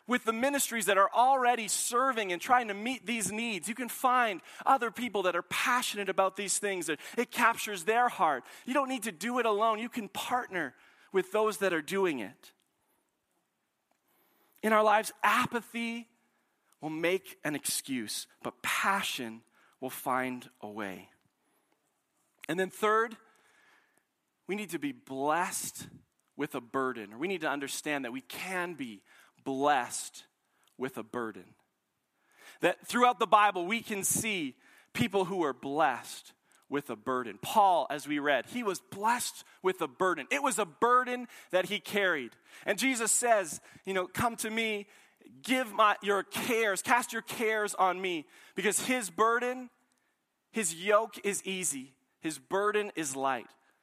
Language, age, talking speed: English, 40-59, 155 wpm